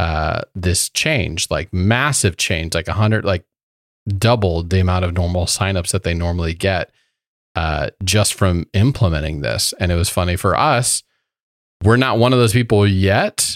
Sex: male